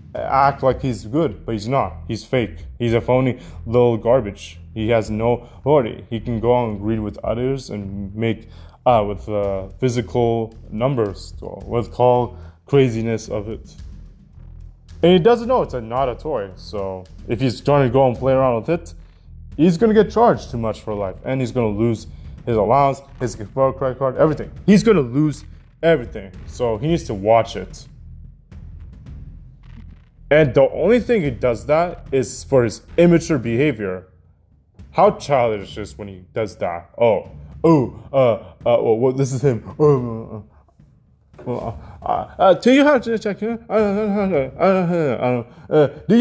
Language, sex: English, male